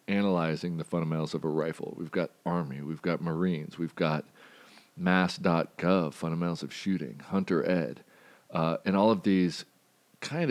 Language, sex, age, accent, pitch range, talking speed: English, male, 40-59, American, 80-95 Hz, 150 wpm